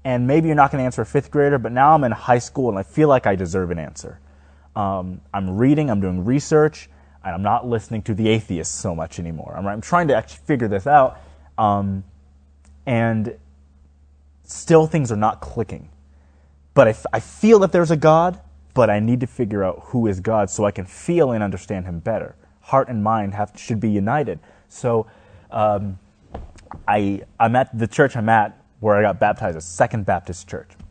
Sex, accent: male, American